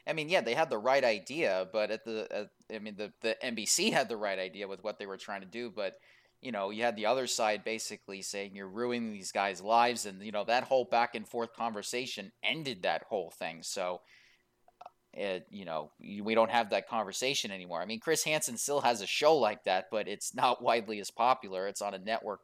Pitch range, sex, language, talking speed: 105-120 Hz, male, English, 225 wpm